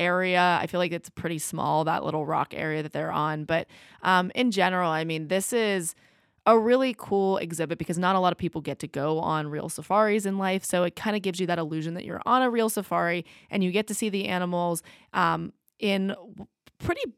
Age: 20-39